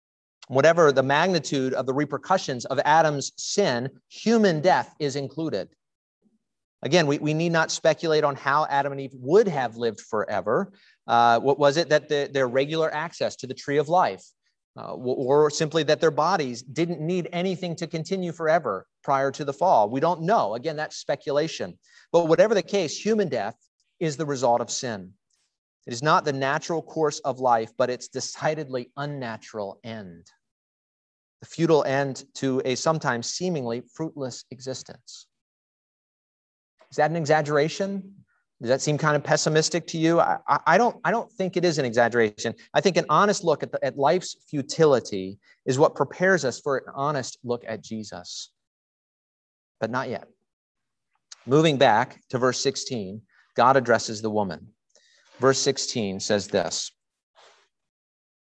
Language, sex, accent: English, male, American